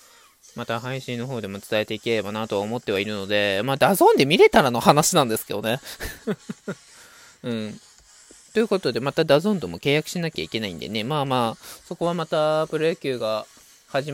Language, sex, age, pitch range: Japanese, male, 20-39, 115-190 Hz